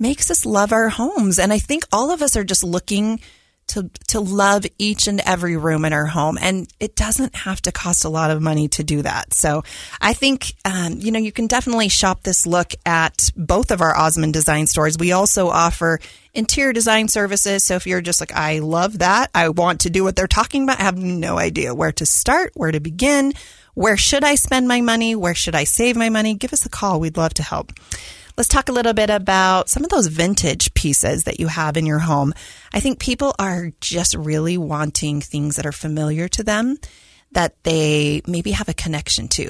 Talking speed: 220 wpm